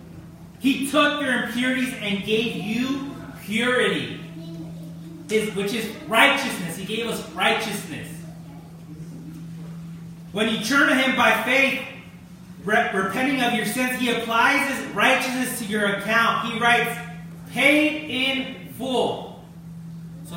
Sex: male